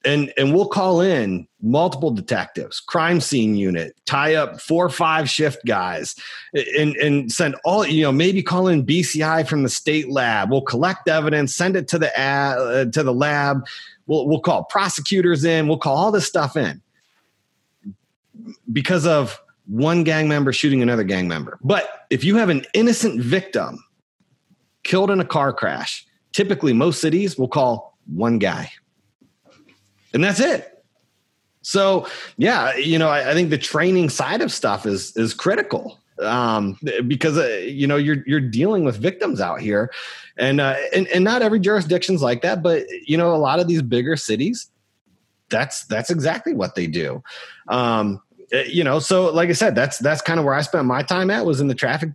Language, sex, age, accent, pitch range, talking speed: English, male, 30-49, American, 135-180 Hz, 180 wpm